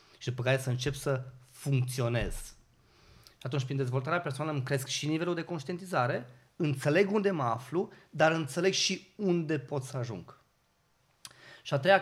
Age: 30-49